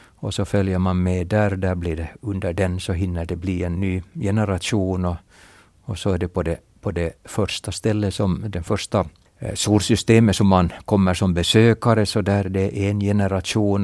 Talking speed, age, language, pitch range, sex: 190 wpm, 60-79, Swedish, 90-110 Hz, male